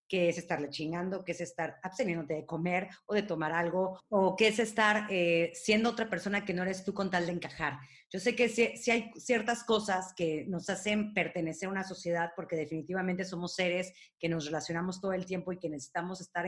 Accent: Mexican